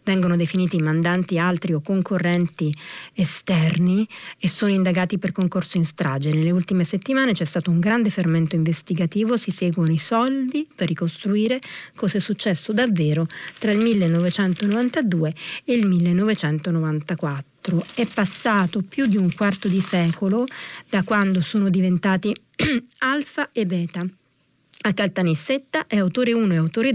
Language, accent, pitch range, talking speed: Italian, native, 160-200 Hz, 135 wpm